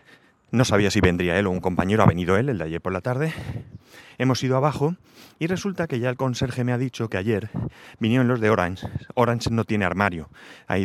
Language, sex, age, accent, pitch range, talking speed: Spanish, male, 30-49, Spanish, 100-130 Hz, 220 wpm